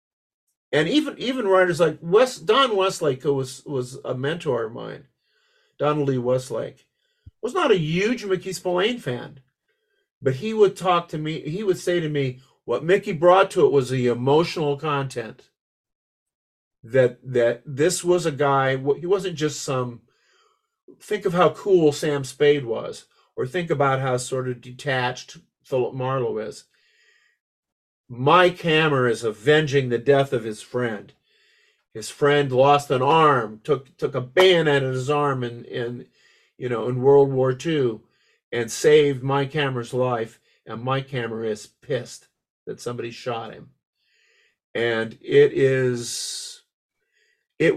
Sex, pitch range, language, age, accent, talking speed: male, 125-175 Hz, English, 50-69, American, 150 wpm